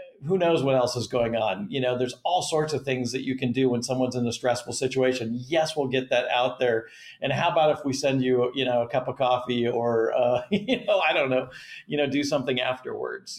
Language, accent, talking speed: English, American, 245 wpm